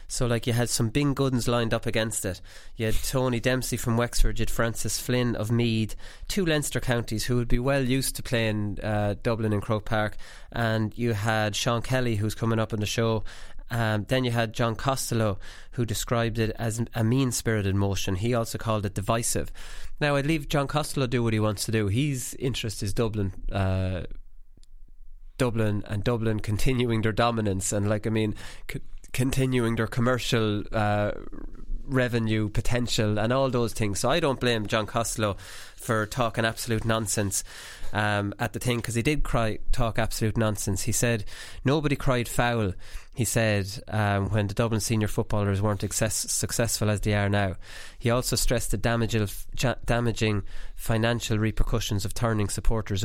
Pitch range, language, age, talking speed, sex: 105-120 Hz, English, 20-39, 180 wpm, male